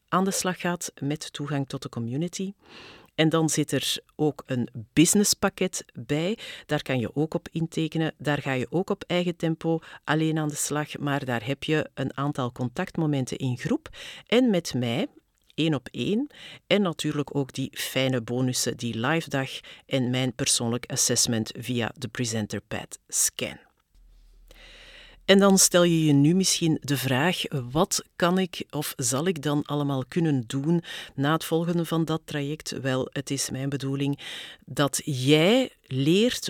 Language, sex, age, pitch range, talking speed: Dutch, female, 50-69, 130-165 Hz, 165 wpm